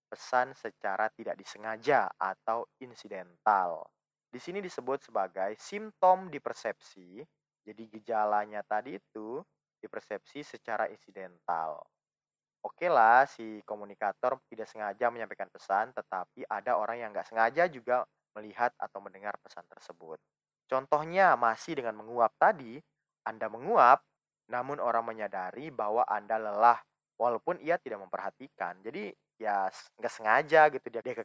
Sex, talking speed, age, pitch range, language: male, 125 wpm, 20-39, 105-140 Hz, Indonesian